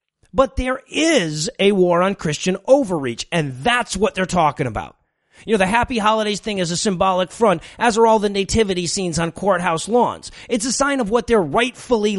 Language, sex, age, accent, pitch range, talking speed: English, male, 30-49, American, 185-235 Hz, 195 wpm